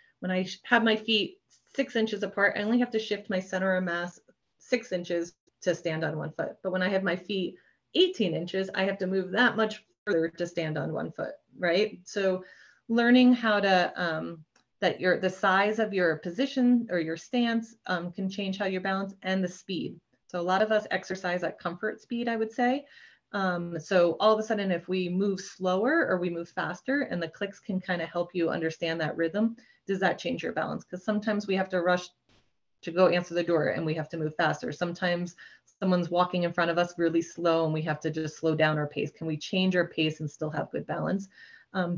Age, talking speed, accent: 30-49, 225 wpm, American